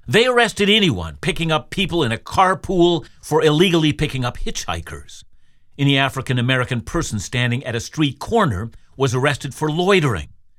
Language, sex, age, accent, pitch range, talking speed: English, male, 50-69, American, 120-160 Hz, 145 wpm